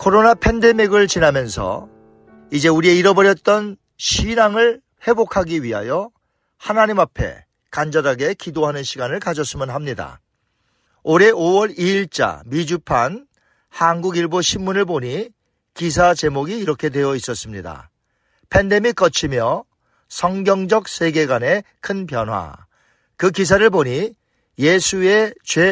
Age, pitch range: 40-59, 150-210 Hz